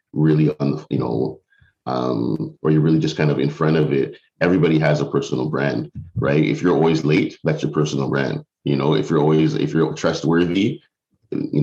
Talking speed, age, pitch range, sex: 195 wpm, 30-49, 70-80 Hz, male